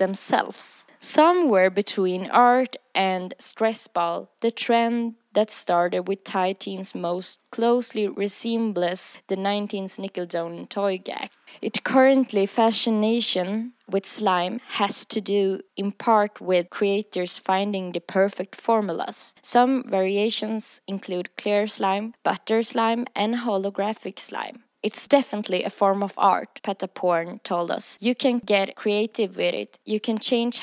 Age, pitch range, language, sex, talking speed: 20-39, 190-230 Hz, Swedish, female, 130 wpm